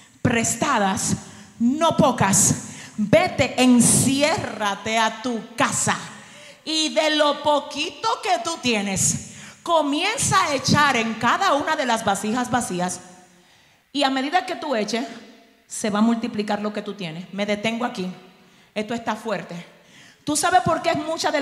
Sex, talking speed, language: female, 145 wpm, Spanish